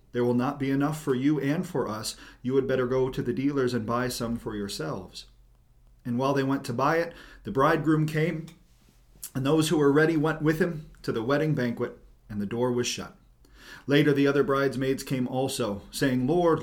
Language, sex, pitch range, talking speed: English, male, 120-155 Hz, 205 wpm